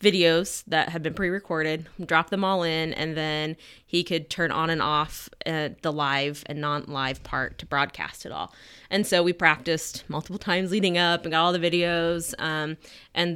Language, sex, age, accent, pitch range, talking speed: English, female, 20-39, American, 155-180 Hz, 190 wpm